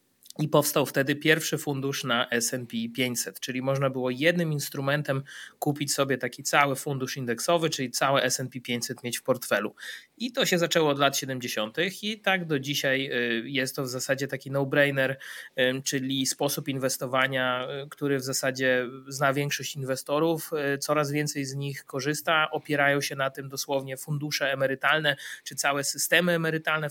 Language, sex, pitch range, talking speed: Polish, male, 135-155 Hz, 150 wpm